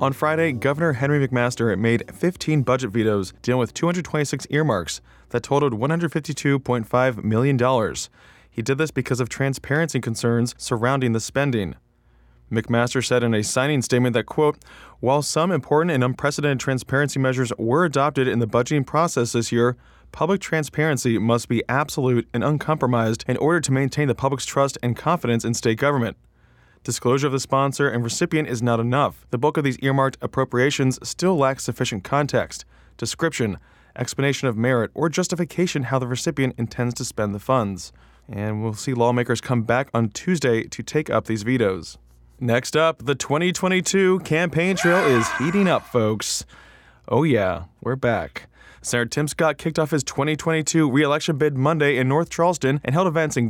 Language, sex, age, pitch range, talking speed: English, male, 20-39, 120-150 Hz, 165 wpm